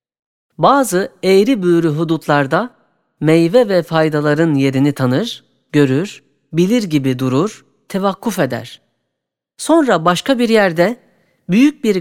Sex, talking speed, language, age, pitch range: female, 105 wpm, Turkish, 40-59, 140-200 Hz